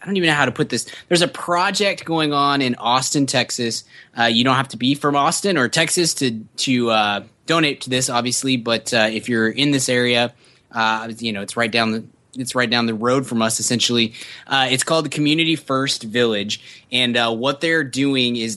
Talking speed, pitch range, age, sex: 220 wpm, 115-140 Hz, 20-39, male